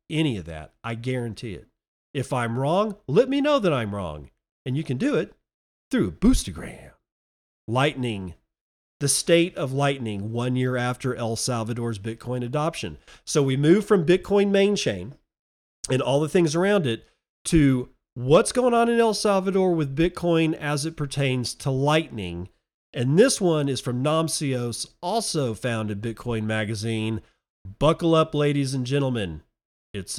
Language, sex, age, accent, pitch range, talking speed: English, male, 40-59, American, 110-150 Hz, 155 wpm